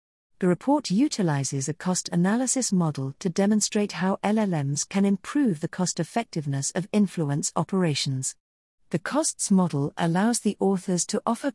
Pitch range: 155-210 Hz